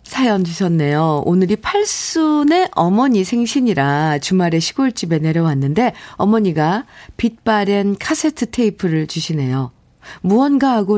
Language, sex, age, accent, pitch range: Korean, female, 50-69, native, 155-210 Hz